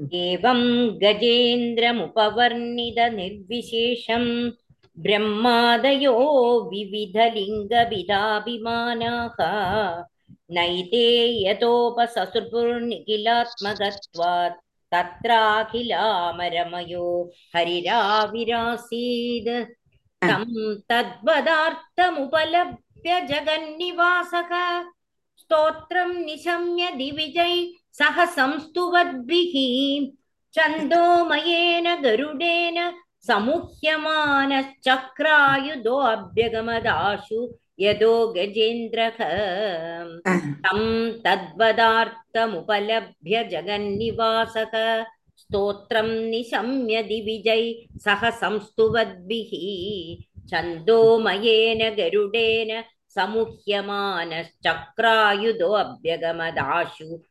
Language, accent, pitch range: Tamil, native, 205-270 Hz